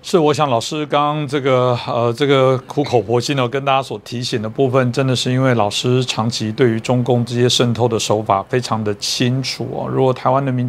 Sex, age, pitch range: male, 50-69, 120-140 Hz